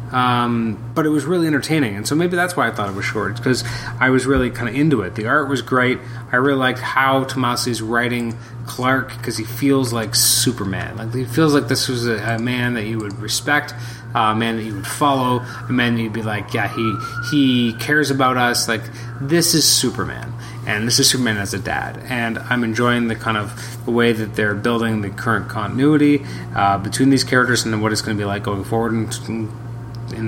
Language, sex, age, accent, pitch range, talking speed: English, male, 30-49, American, 115-135 Hz, 225 wpm